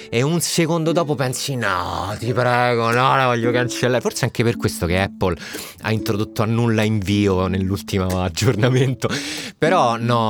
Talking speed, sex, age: 155 wpm, male, 30-49